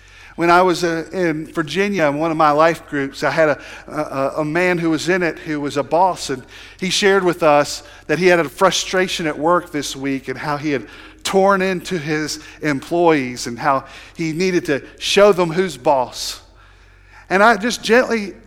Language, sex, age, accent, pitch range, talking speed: English, male, 50-69, American, 115-170 Hz, 195 wpm